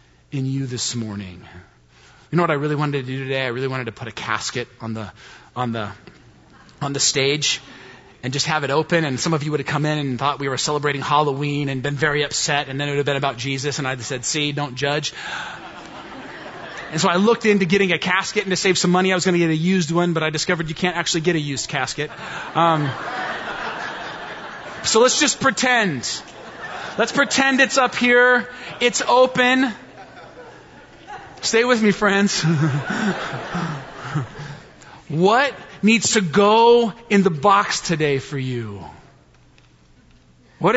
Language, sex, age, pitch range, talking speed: English, male, 30-49, 130-200 Hz, 180 wpm